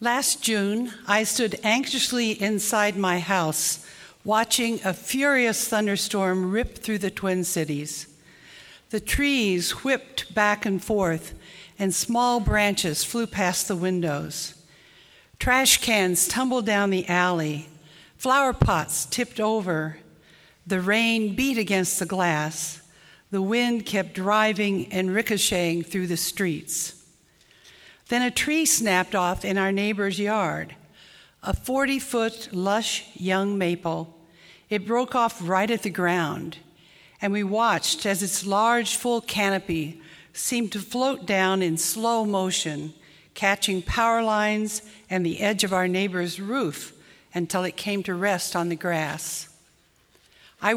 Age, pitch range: 60-79, 175-220 Hz